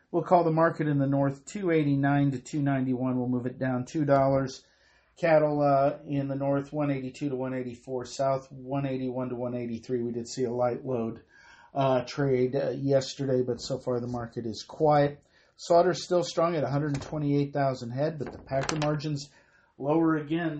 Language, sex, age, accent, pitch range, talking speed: English, male, 50-69, American, 125-165 Hz, 165 wpm